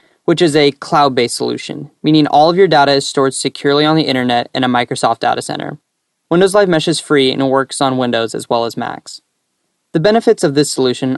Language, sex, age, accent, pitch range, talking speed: English, male, 10-29, American, 130-160 Hz, 215 wpm